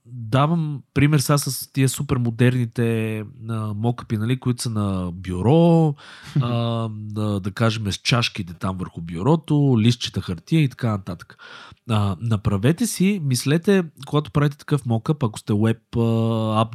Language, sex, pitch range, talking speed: Bulgarian, male, 105-140 Hz, 135 wpm